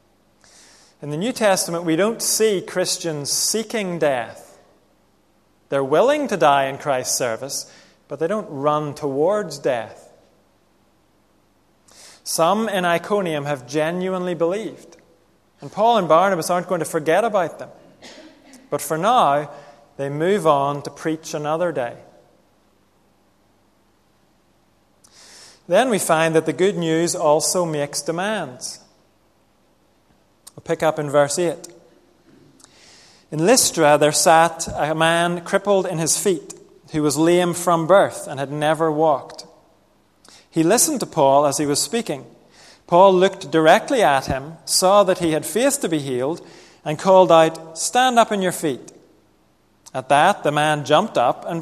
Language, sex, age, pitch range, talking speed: English, male, 30-49, 145-190 Hz, 140 wpm